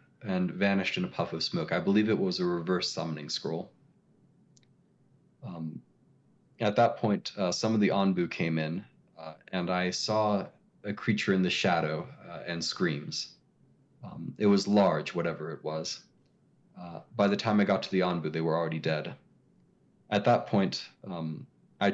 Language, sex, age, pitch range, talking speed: English, male, 30-49, 85-105 Hz, 170 wpm